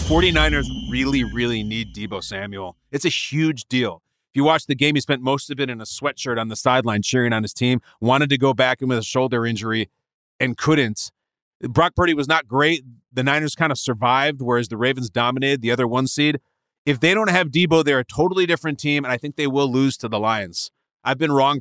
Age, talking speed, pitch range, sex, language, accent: 30-49, 225 wpm, 120-145 Hz, male, English, American